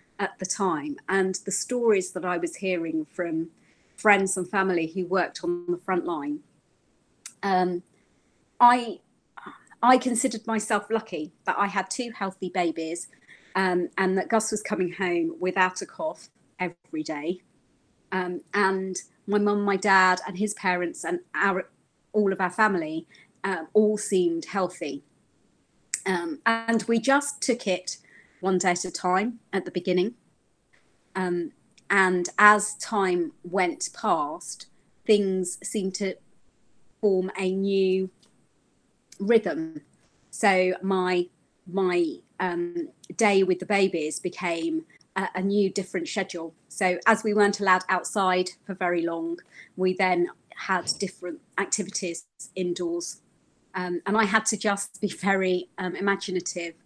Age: 30-49